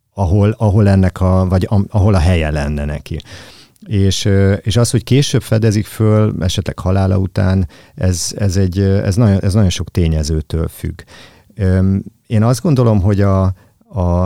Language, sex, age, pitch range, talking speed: Hungarian, male, 50-69, 85-100 Hz, 150 wpm